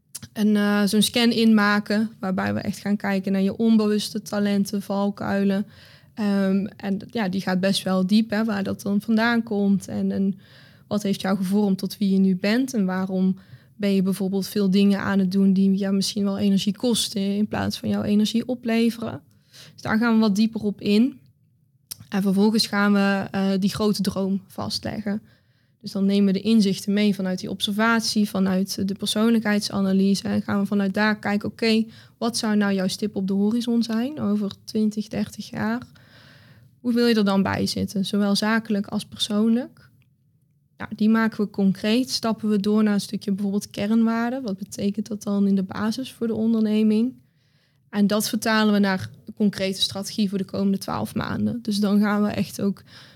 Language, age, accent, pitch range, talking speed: Dutch, 20-39, Dutch, 195-215 Hz, 185 wpm